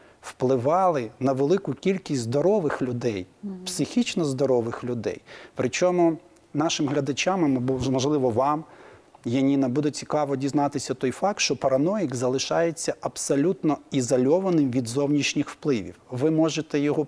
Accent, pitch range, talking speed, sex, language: native, 125-155 Hz, 110 wpm, male, Ukrainian